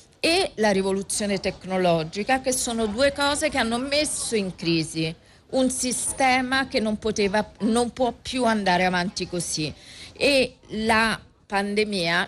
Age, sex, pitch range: 40-59, female, 175-235 Hz